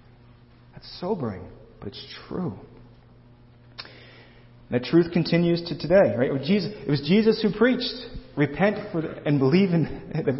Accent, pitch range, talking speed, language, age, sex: American, 125-185 Hz, 135 wpm, English, 40-59, male